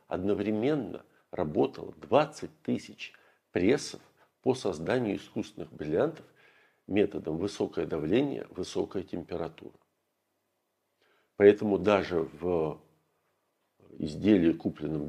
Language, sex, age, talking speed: Russian, male, 50-69, 75 wpm